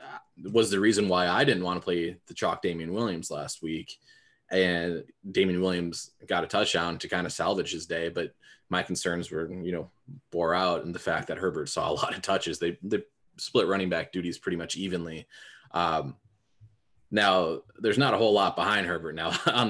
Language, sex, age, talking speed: English, male, 20-39, 200 wpm